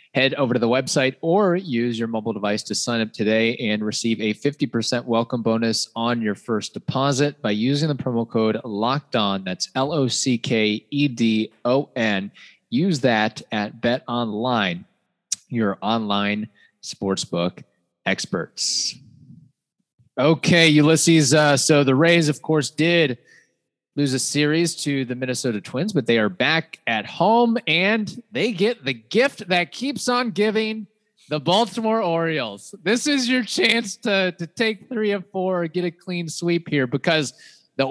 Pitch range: 120-180 Hz